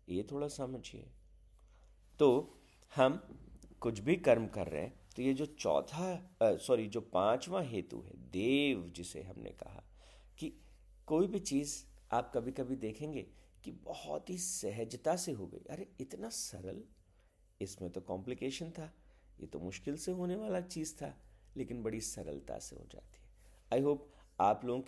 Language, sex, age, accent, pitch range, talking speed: Hindi, male, 50-69, native, 90-135 Hz, 155 wpm